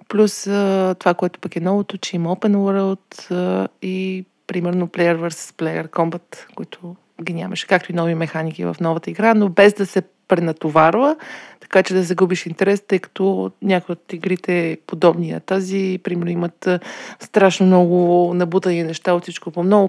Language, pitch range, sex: Bulgarian, 170-195 Hz, female